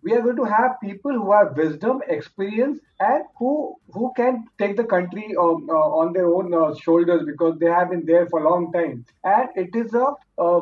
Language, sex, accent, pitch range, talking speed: English, male, Indian, 165-220 Hz, 215 wpm